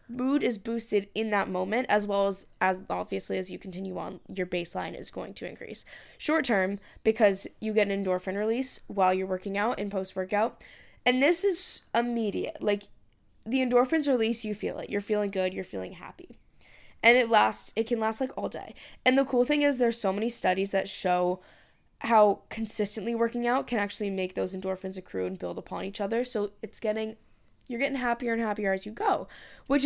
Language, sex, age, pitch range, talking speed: English, female, 10-29, 190-230 Hz, 200 wpm